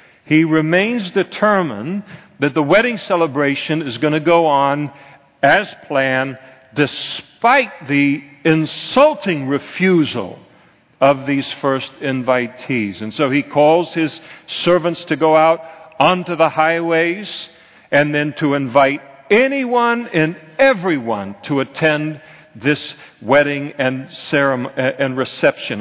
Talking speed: 115 wpm